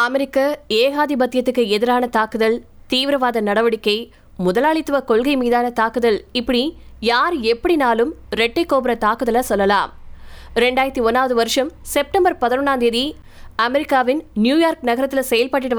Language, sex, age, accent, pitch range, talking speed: Tamil, female, 20-39, native, 230-280 Hz, 95 wpm